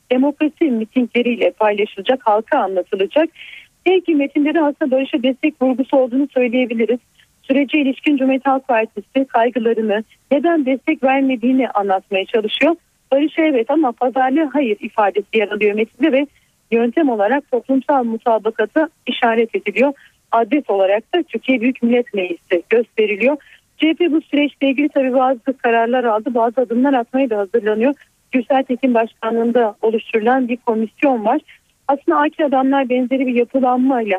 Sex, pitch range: female, 225-285 Hz